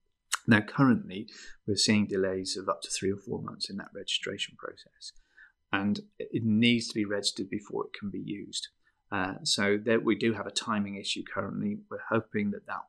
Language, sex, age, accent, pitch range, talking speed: English, male, 30-49, British, 105-155 Hz, 190 wpm